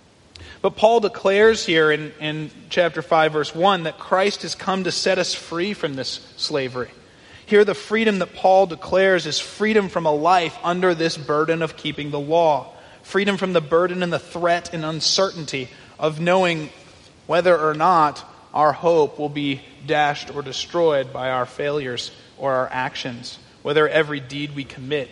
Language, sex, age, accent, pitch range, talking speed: English, male, 30-49, American, 145-180 Hz, 170 wpm